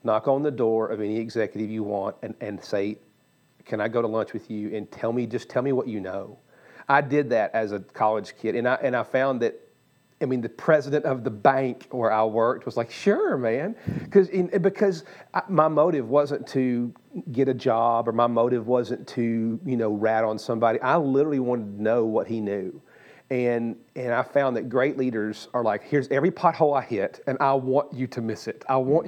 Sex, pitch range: male, 110-135 Hz